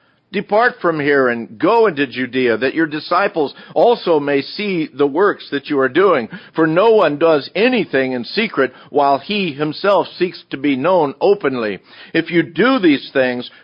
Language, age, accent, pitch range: English, 50-69, American, 130-165 Hz